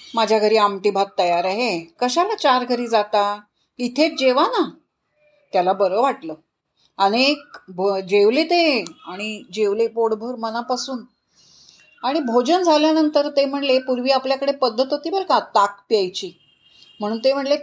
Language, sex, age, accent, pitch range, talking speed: Marathi, female, 30-49, native, 220-300 Hz, 135 wpm